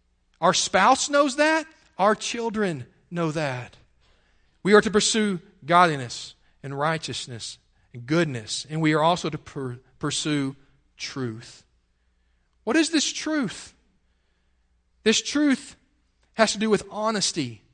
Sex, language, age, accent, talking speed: male, English, 40-59, American, 120 wpm